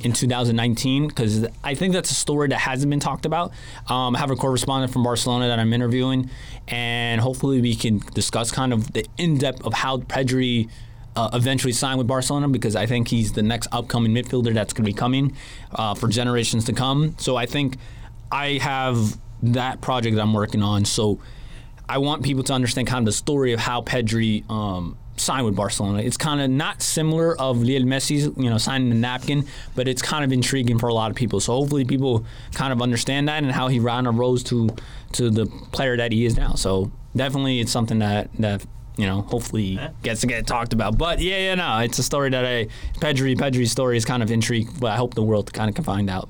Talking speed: 220 wpm